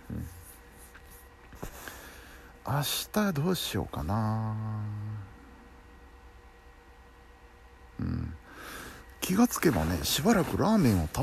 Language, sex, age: Japanese, male, 50-69